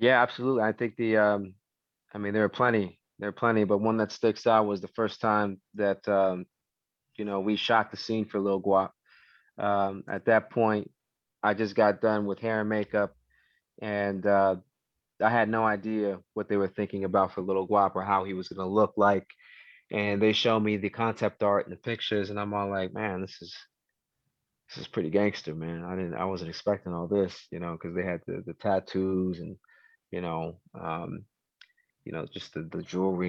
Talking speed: 205 wpm